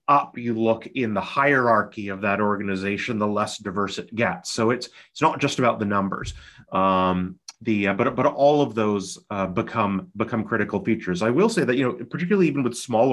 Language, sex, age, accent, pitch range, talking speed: English, male, 30-49, American, 105-135 Hz, 205 wpm